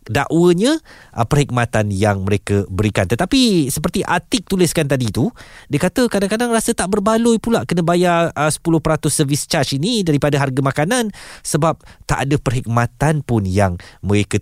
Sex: male